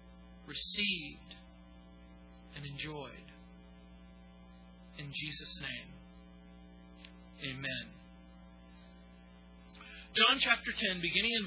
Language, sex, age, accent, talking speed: English, male, 40-59, American, 65 wpm